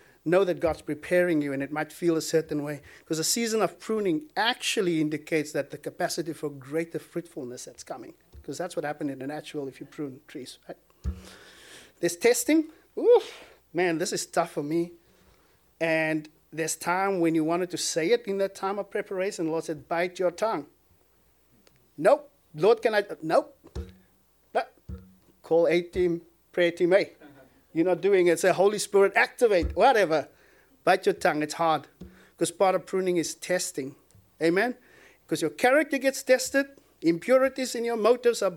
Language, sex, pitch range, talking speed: English, male, 155-200 Hz, 175 wpm